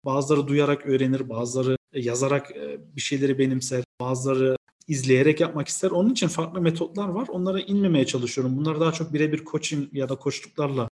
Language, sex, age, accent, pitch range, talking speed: Turkish, male, 40-59, native, 135-185 Hz, 155 wpm